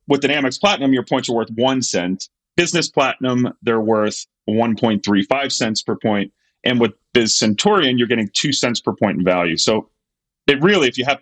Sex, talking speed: male, 195 wpm